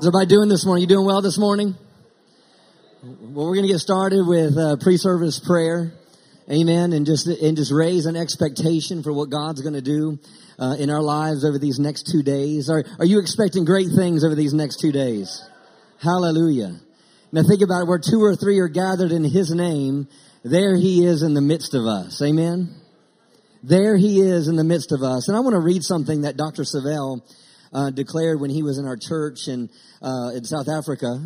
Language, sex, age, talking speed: English, male, 40-59, 205 wpm